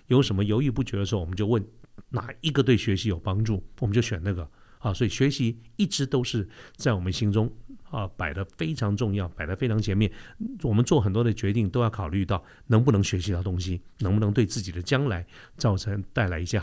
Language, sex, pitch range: Chinese, male, 100-135 Hz